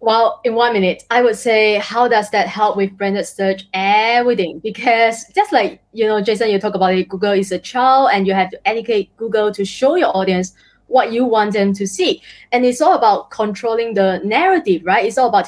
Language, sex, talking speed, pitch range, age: English, female, 215 wpm, 200-240 Hz, 20-39